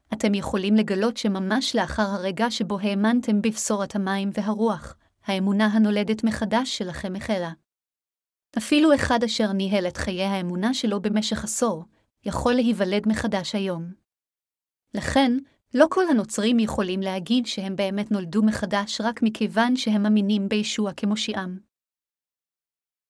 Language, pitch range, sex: Hebrew, 200-225 Hz, female